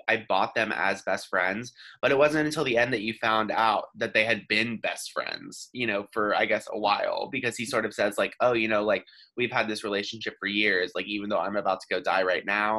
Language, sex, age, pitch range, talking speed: English, male, 20-39, 105-125 Hz, 260 wpm